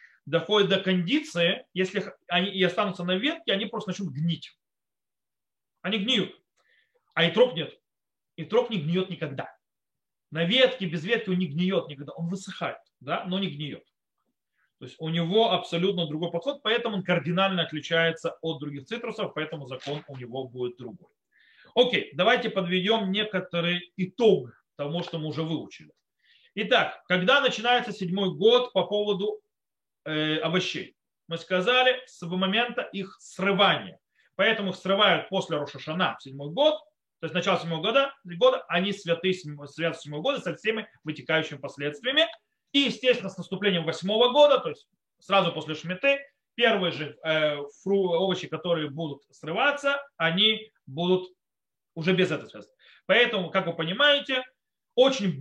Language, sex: Russian, male